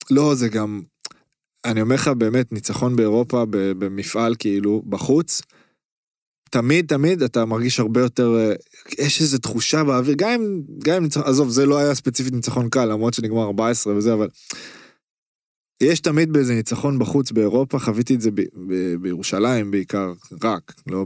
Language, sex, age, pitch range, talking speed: Hebrew, male, 20-39, 110-130 Hz, 140 wpm